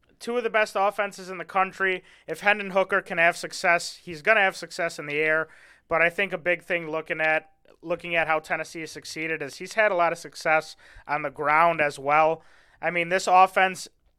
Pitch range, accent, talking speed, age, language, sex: 155-185 Hz, American, 215 wpm, 30-49, English, male